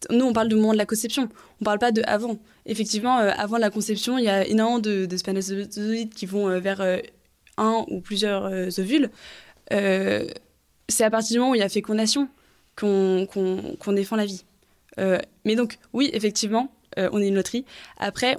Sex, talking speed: female, 210 wpm